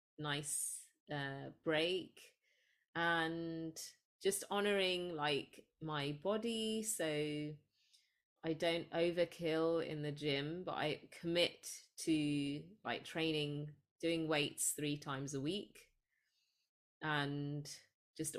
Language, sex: English, female